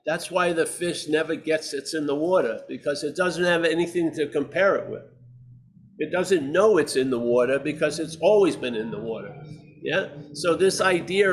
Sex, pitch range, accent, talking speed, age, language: male, 140-170 Hz, American, 195 wpm, 50-69, English